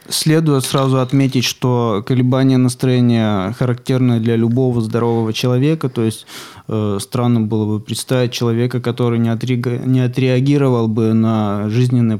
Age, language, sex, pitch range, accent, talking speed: 20-39, Russian, male, 115-130 Hz, native, 125 wpm